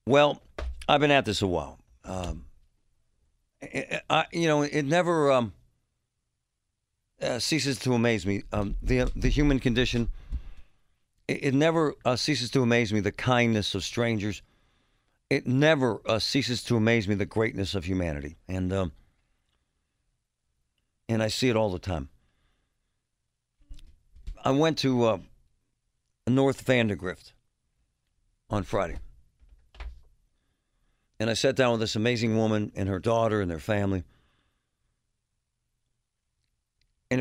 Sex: male